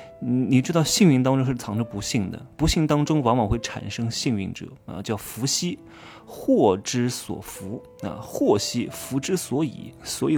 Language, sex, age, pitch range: Chinese, male, 20-39, 110-150 Hz